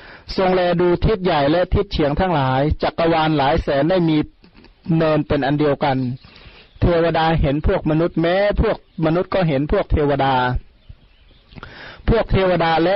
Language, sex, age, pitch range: Thai, male, 30-49, 145-180 Hz